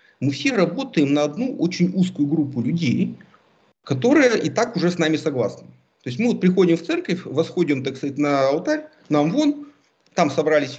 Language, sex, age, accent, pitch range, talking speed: Russian, male, 50-69, native, 130-175 Hz, 180 wpm